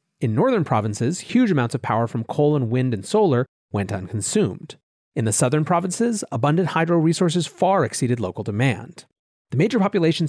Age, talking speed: 30-49, 170 wpm